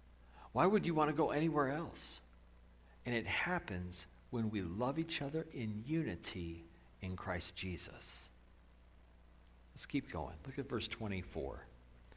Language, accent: English, American